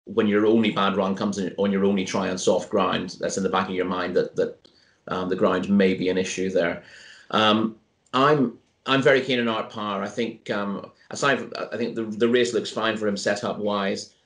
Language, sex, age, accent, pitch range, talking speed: English, male, 30-49, British, 100-115 Hz, 235 wpm